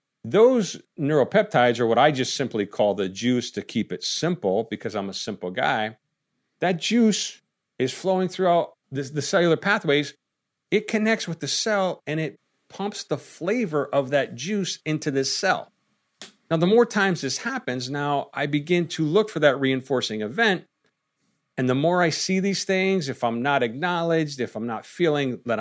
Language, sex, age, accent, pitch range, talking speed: English, male, 50-69, American, 130-180 Hz, 175 wpm